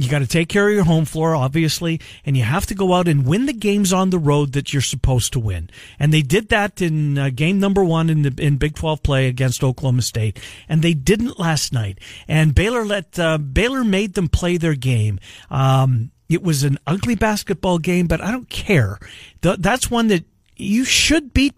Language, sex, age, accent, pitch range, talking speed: English, male, 50-69, American, 135-200 Hz, 220 wpm